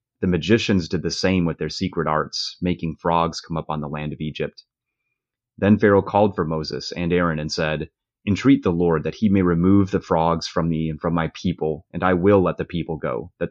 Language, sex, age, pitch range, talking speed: English, male, 30-49, 80-100 Hz, 220 wpm